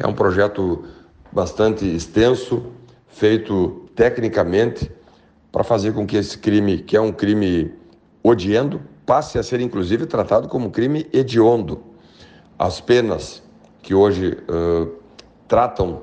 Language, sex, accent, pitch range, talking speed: Portuguese, male, Brazilian, 95-120 Hz, 120 wpm